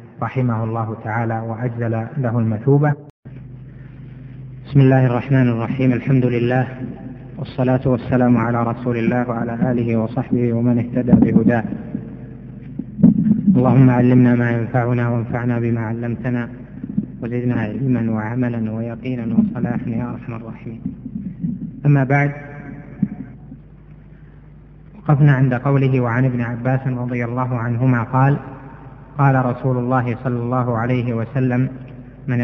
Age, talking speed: 20-39, 105 wpm